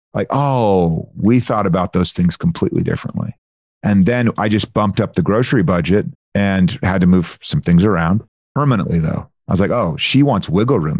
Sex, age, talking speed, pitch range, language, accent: male, 40-59, 190 wpm, 95-120 Hz, English, American